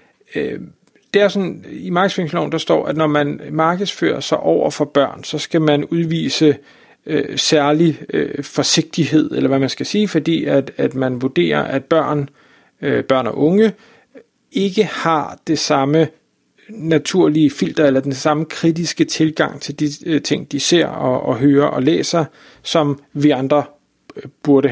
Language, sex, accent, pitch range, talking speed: Danish, male, native, 145-165 Hz, 160 wpm